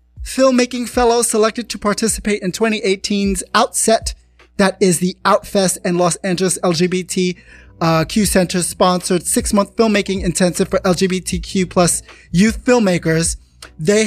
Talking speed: 125 wpm